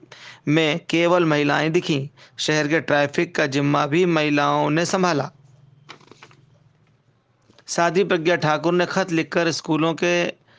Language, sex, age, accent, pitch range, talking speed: Hindi, male, 40-59, native, 145-170 Hz, 115 wpm